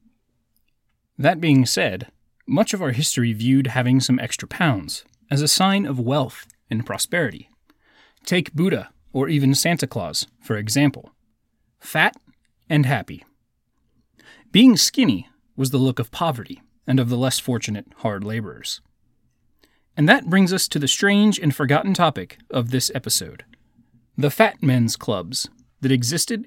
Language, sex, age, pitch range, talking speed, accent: English, male, 30-49, 125-165 Hz, 145 wpm, American